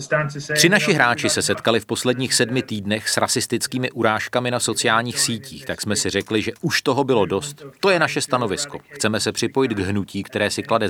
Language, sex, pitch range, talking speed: Czech, male, 100-125 Hz, 200 wpm